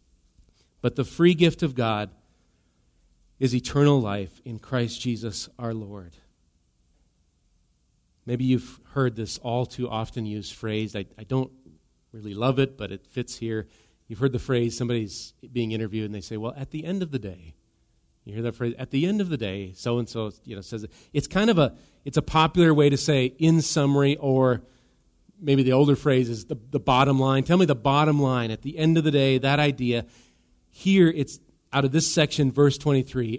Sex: male